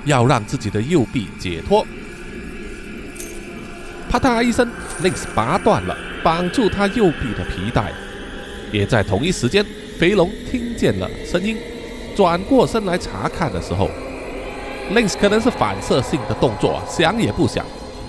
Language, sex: Chinese, male